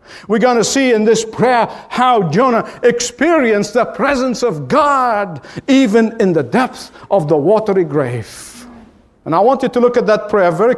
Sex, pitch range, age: male, 200-250 Hz, 50-69